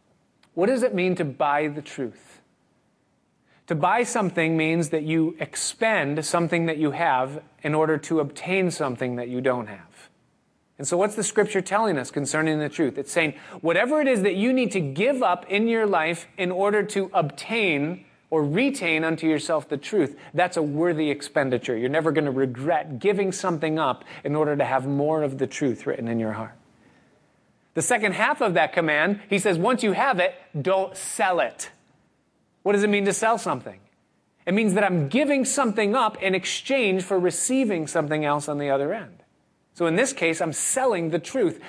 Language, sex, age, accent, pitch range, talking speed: English, male, 30-49, American, 145-195 Hz, 190 wpm